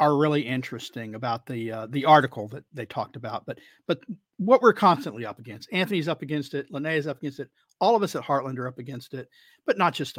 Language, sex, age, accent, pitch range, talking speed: English, male, 50-69, American, 140-210 Hz, 230 wpm